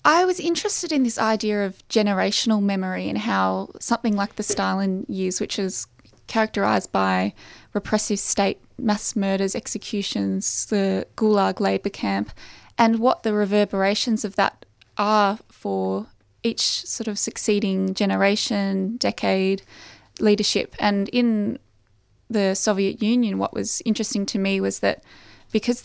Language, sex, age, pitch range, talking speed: English, female, 20-39, 190-220 Hz, 130 wpm